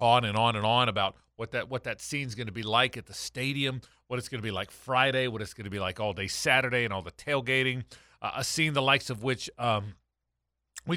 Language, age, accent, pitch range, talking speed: English, 40-59, American, 110-140 Hz, 250 wpm